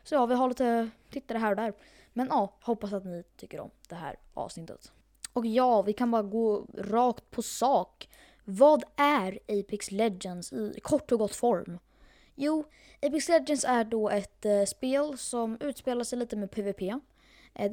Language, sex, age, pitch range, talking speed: Swedish, female, 20-39, 200-250 Hz, 170 wpm